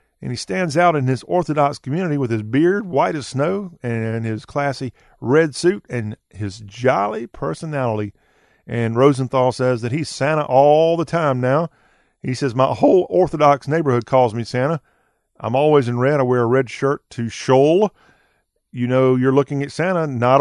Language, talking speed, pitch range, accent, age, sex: English, 175 wpm, 120-150 Hz, American, 40-59, male